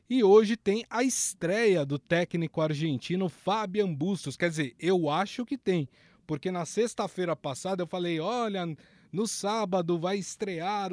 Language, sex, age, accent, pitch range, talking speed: Portuguese, male, 20-39, Brazilian, 150-190 Hz, 150 wpm